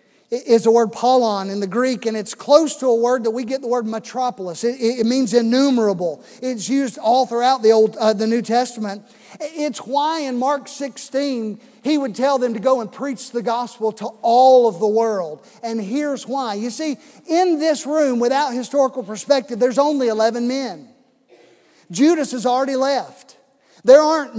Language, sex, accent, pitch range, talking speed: English, male, American, 235-275 Hz, 180 wpm